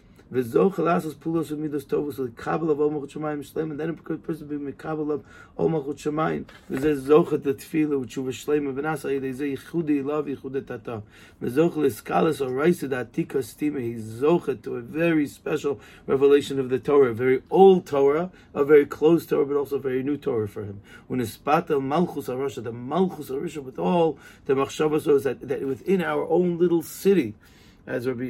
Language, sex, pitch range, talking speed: English, male, 125-155 Hz, 85 wpm